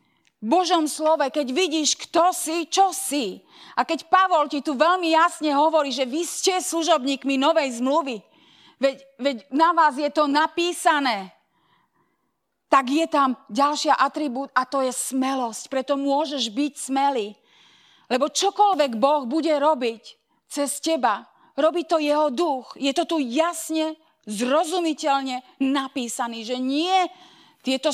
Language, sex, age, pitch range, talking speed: Slovak, female, 30-49, 275-325 Hz, 135 wpm